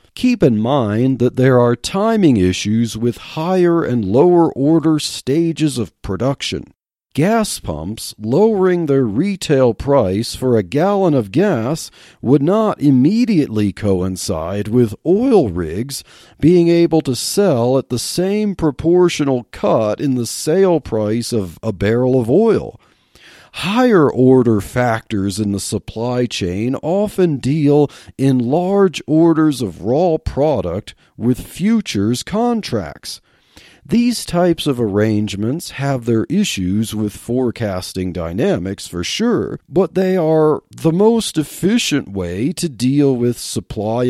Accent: American